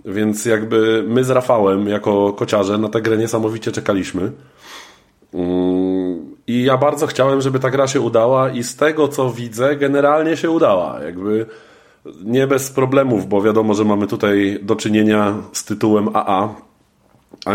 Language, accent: Polish, native